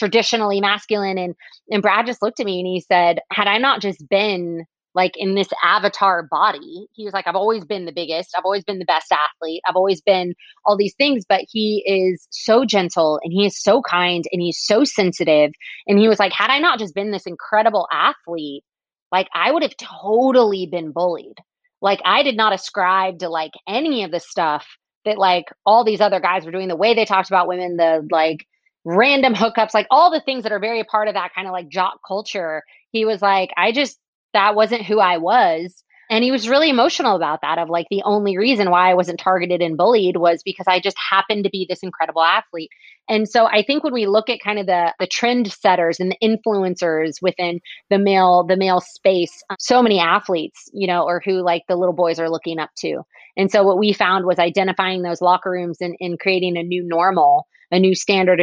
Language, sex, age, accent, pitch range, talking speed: English, female, 20-39, American, 175-210 Hz, 220 wpm